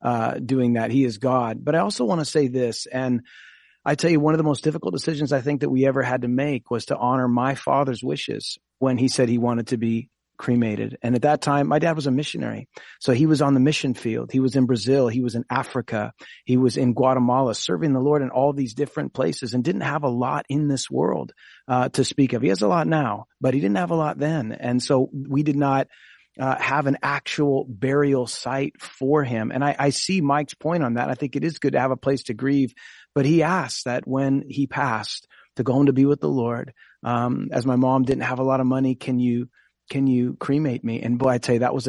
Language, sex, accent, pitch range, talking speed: English, male, American, 125-145 Hz, 250 wpm